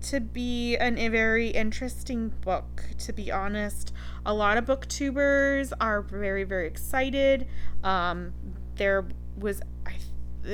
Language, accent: English, American